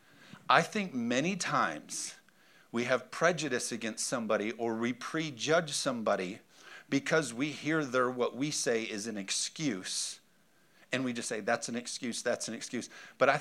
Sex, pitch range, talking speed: male, 115-150 Hz, 155 wpm